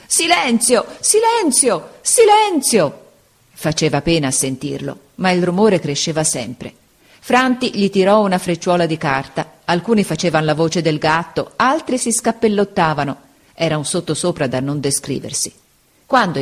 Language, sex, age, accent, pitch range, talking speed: Italian, female, 40-59, native, 145-210 Hz, 125 wpm